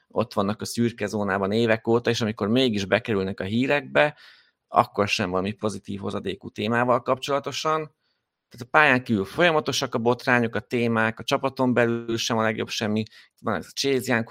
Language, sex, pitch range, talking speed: Hungarian, male, 105-125 Hz, 170 wpm